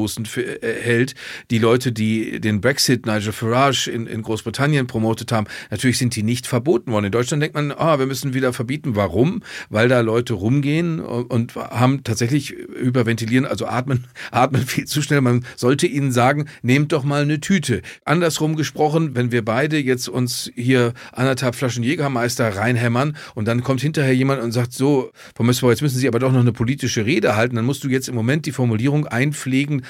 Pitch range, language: 115-140 Hz, German